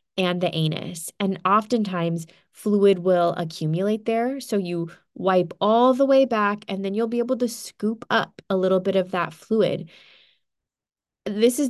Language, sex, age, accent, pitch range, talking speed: English, female, 20-39, American, 175-230 Hz, 165 wpm